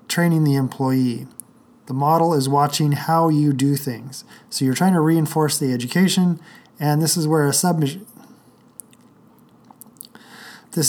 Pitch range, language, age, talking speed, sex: 135-165 Hz, English, 20-39, 140 wpm, male